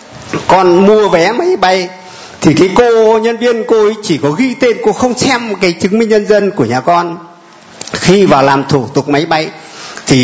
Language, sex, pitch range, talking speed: Vietnamese, male, 165-215 Hz, 205 wpm